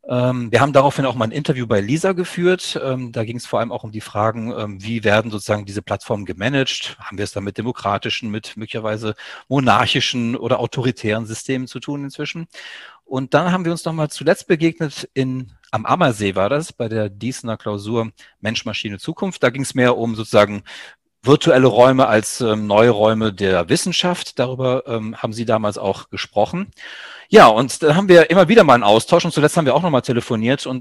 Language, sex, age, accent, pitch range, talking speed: German, male, 40-59, German, 110-140 Hz, 195 wpm